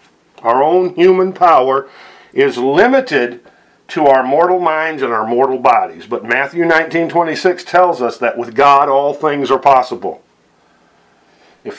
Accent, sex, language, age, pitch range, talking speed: American, male, English, 50-69, 125-170 Hz, 135 wpm